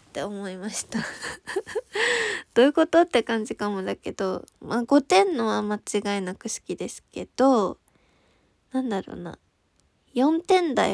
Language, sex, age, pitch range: Japanese, female, 20-39, 195-240 Hz